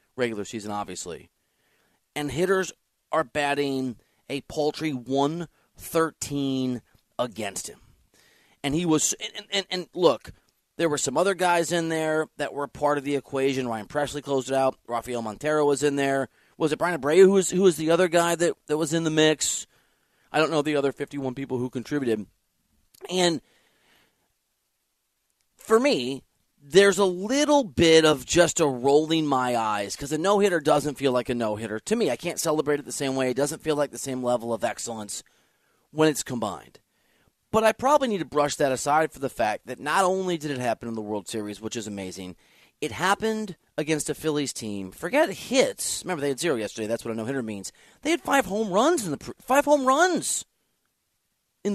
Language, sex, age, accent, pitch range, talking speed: English, male, 30-49, American, 125-170 Hz, 190 wpm